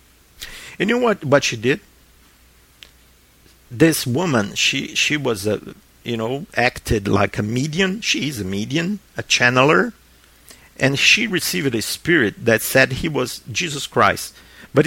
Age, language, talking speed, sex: 50-69, English, 145 wpm, male